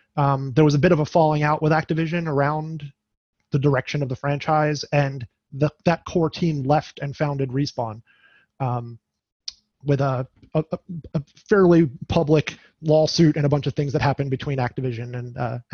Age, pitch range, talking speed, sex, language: 30-49, 135-155 Hz, 170 wpm, male, English